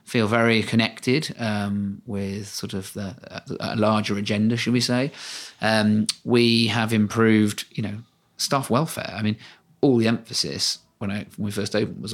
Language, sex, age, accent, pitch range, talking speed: English, male, 30-49, British, 105-115 Hz, 175 wpm